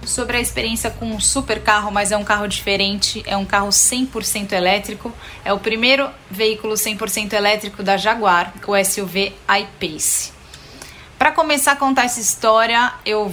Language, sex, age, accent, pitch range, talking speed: Portuguese, female, 10-29, Brazilian, 195-245 Hz, 160 wpm